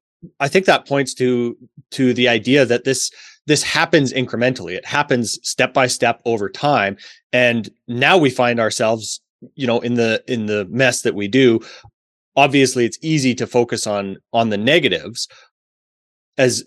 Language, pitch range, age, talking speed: English, 115-145 Hz, 30-49, 160 wpm